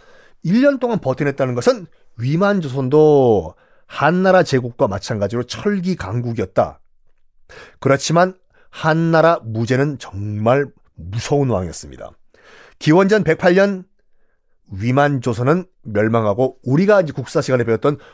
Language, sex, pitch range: Korean, male, 115-170 Hz